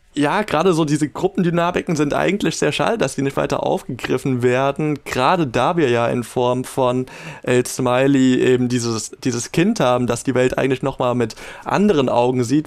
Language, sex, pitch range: German, male, 120-150 Hz